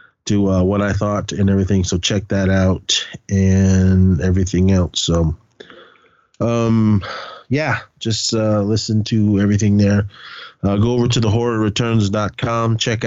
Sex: male